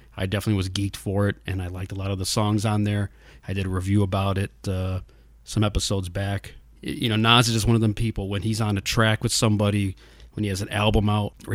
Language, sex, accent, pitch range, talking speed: English, male, American, 95-110 Hz, 255 wpm